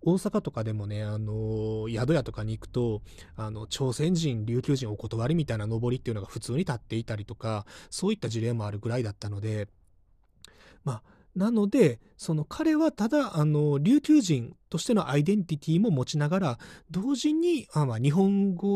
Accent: native